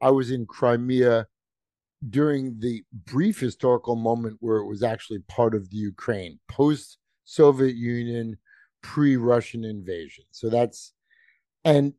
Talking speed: 130 wpm